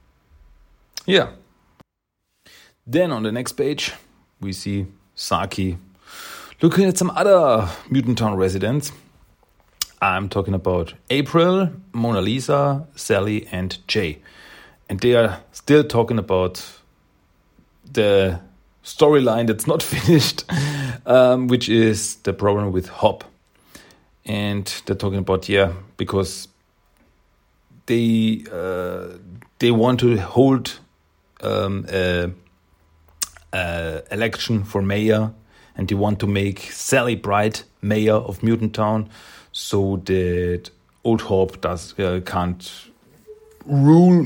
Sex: male